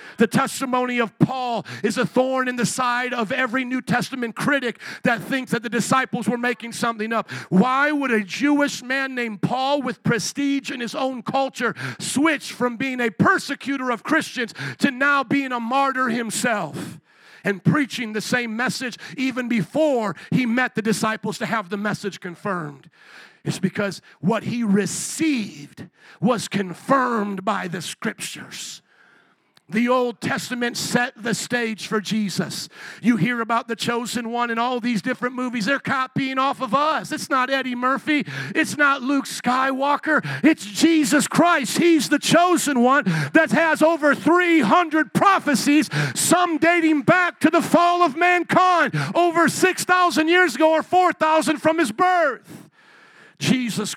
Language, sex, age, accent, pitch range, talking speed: English, male, 50-69, American, 225-285 Hz, 155 wpm